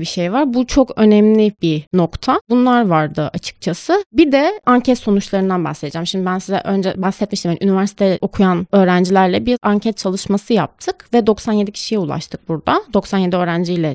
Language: Turkish